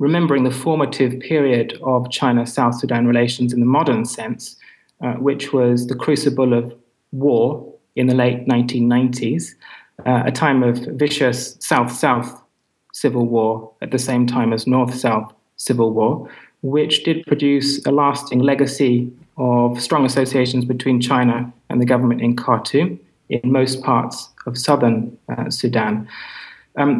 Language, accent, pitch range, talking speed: English, British, 120-140 Hz, 140 wpm